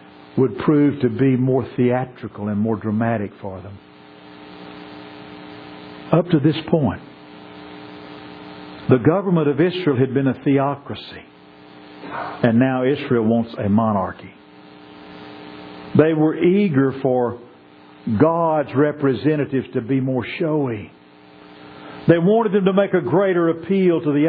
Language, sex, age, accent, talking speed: English, male, 50-69, American, 120 wpm